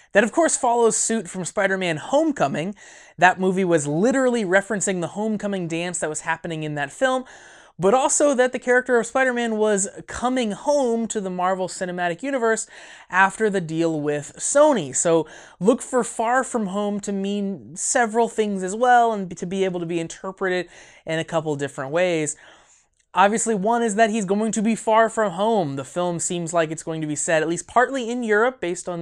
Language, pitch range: English, 165-225 Hz